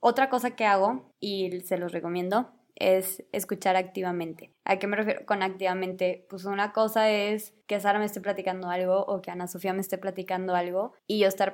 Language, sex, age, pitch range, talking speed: Spanish, female, 20-39, 190-230 Hz, 200 wpm